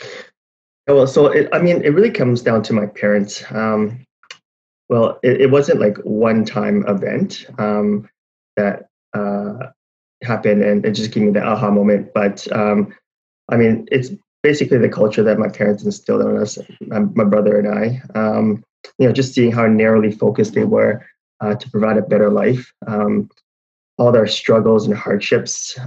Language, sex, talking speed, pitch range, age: English, male, 175 wpm, 105-115 Hz, 20-39